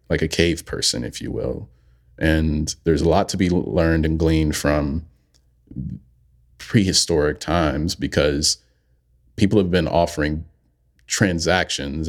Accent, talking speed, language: American, 125 wpm, English